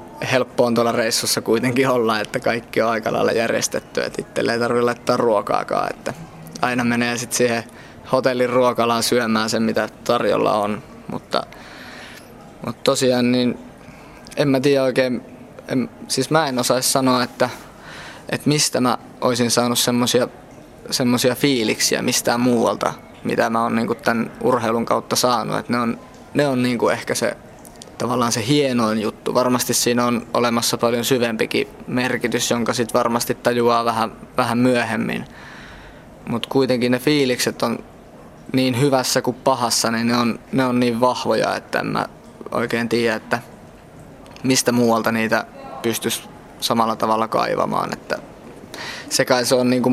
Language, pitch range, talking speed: Finnish, 115-130 Hz, 145 wpm